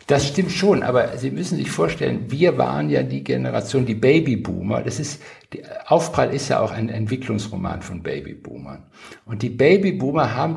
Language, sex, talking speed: German, male, 165 wpm